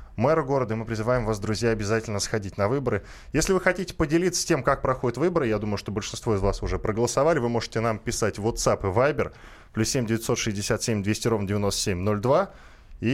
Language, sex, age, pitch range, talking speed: Russian, male, 20-39, 100-135 Hz, 180 wpm